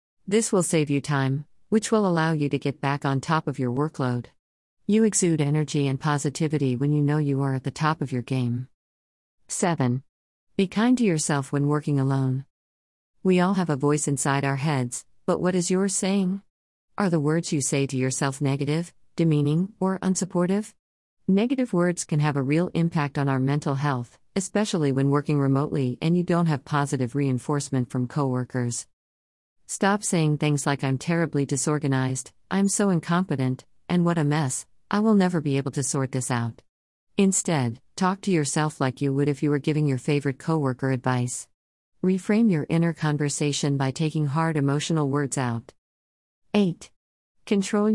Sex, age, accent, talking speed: female, 50-69, American, 175 wpm